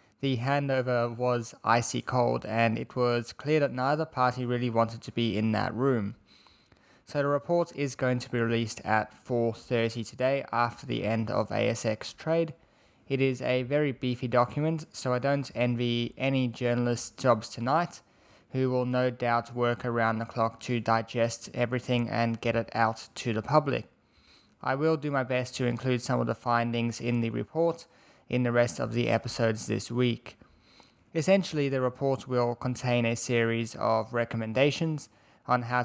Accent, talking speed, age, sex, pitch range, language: Australian, 170 wpm, 20-39, male, 115-135 Hz, English